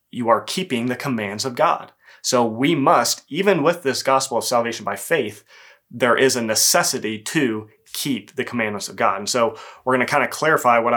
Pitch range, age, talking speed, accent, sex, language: 115-135 Hz, 30-49, 200 wpm, American, male, English